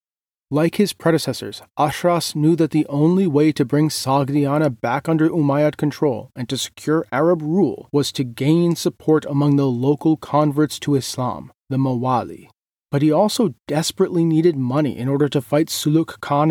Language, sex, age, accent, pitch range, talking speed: English, male, 30-49, American, 130-155 Hz, 165 wpm